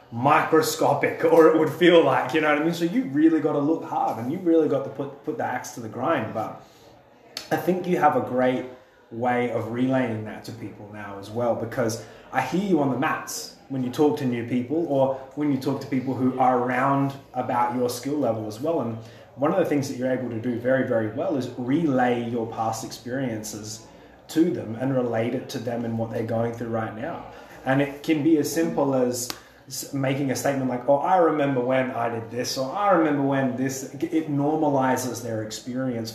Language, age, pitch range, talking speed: English, 20-39, 120-150 Hz, 220 wpm